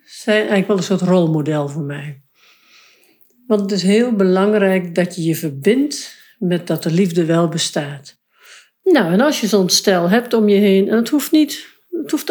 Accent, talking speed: Dutch, 190 wpm